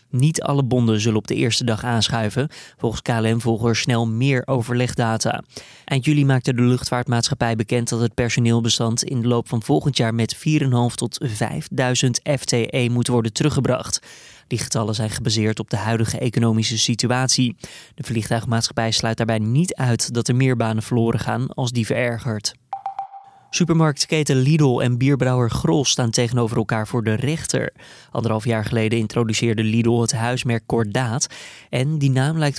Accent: Dutch